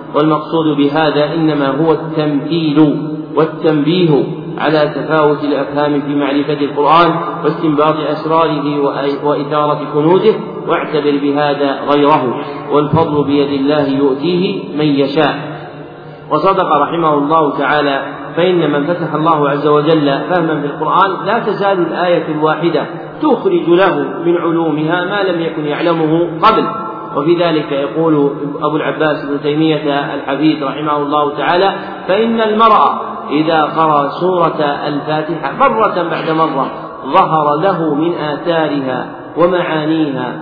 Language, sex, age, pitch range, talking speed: Arabic, male, 40-59, 145-170 Hz, 115 wpm